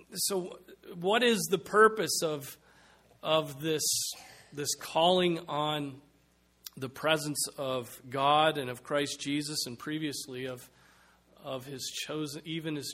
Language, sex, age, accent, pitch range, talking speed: English, male, 40-59, American, 140-175 Hz, 115 wpm